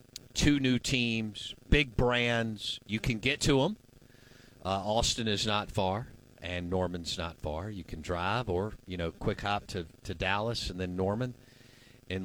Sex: male